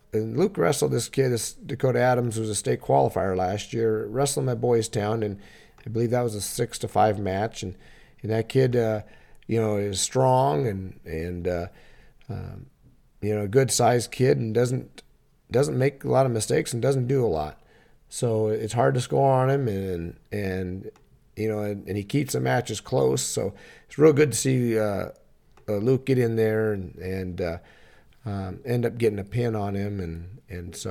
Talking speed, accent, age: 205 wpm, American, 40-59